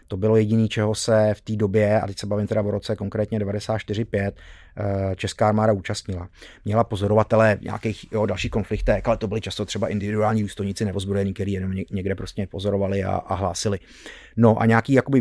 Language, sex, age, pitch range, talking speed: Czech, male, 30-49, 100-120 Hz, 180 wpm